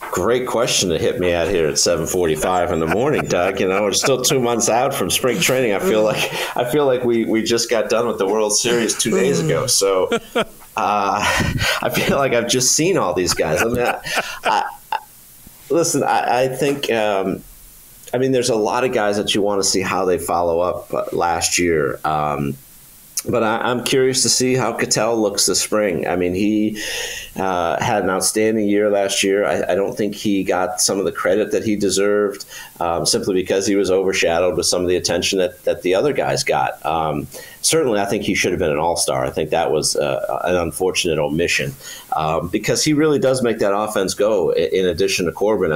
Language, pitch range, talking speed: English, 95-125 Hz, 215 wpm